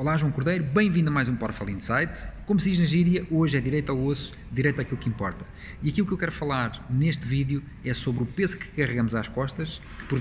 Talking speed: 240 wpm